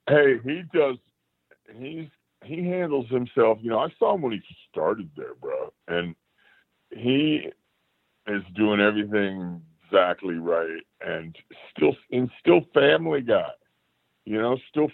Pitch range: 95-125 Hz